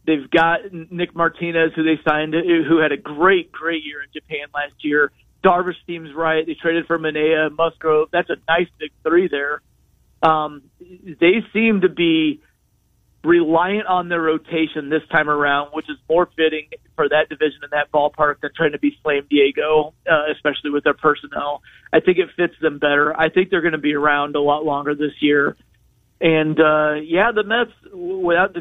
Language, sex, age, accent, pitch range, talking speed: English, male, 40-59, American, 150-185 Hz, 185 wpm